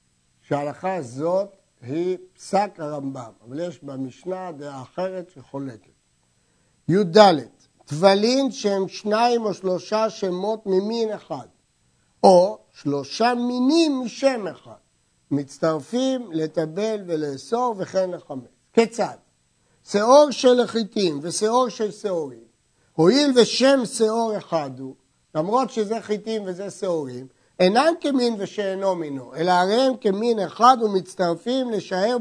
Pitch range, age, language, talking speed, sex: 155-220 Hz, 60-79, Hebrew, 110 wpm, male